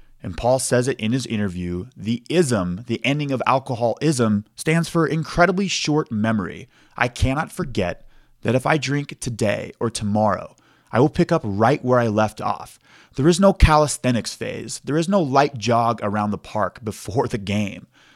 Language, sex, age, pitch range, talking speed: English, male, 20-39, 110-160 Hz, 175 wpm